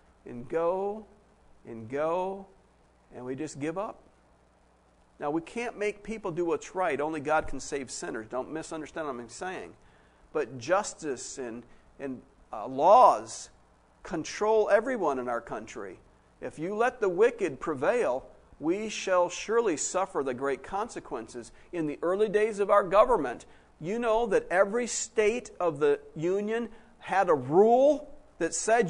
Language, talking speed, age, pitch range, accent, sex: English, 145 wpm, 50-69, 165-260 Hz, American, male